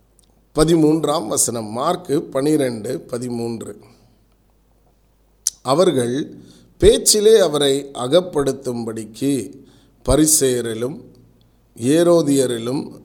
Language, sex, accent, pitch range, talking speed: Tamil, male, native, 120-155 Hz, 50 wpm